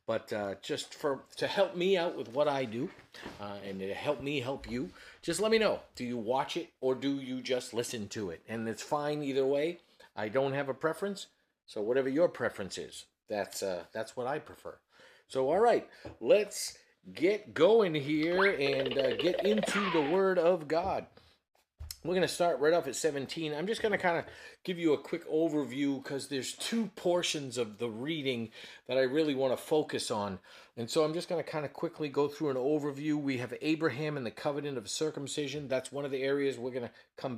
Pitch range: 130-165 Hz